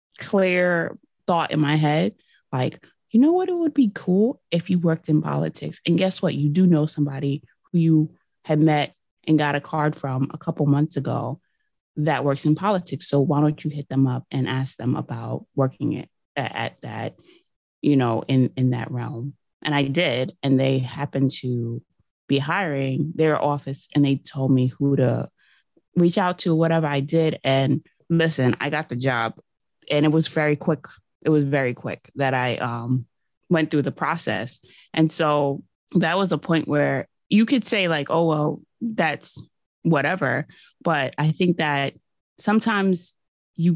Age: 20-39